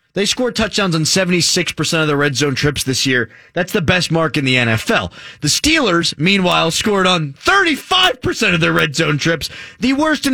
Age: 30-49